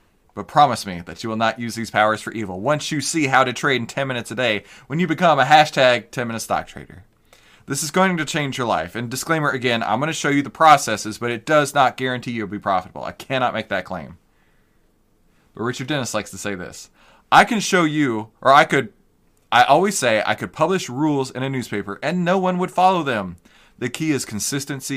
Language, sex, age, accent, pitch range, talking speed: English, male, 30-49, American, 105-145 Hz, 230 wpm